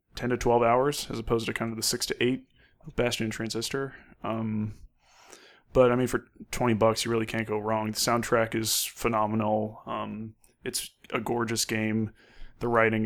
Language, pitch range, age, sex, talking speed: English, 110-125 Hz, 20-39, male, 180 wpm